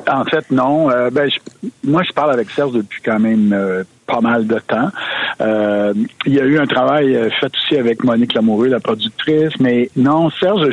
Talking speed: 200 wpm